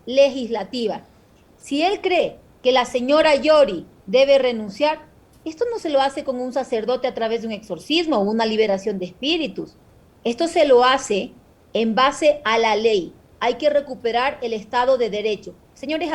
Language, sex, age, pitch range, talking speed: Spanish, female, 40-59, 230-300 Hz, 165 wpm